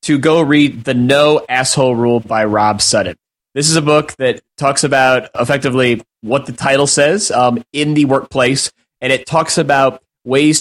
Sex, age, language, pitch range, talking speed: male, 20-39, English, 125-150 Hz, 175 wpm